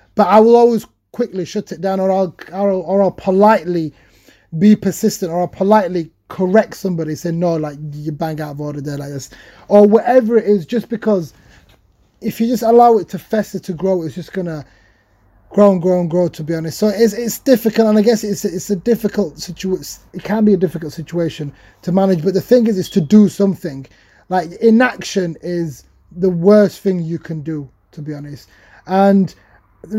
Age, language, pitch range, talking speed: 30-49, English, 160-210 Hz, 200 wpm